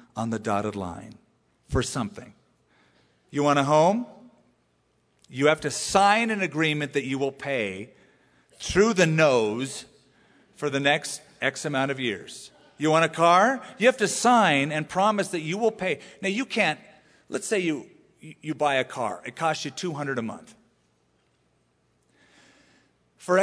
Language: English